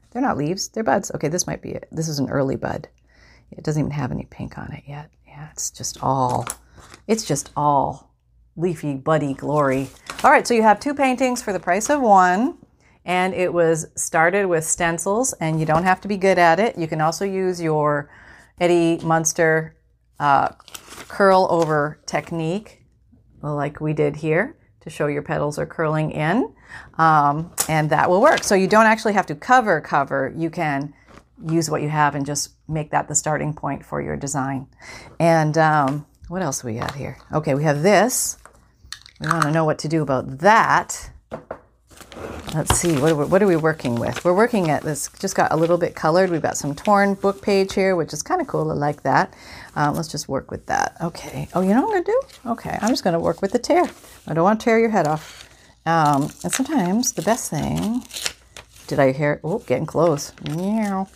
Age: 30-49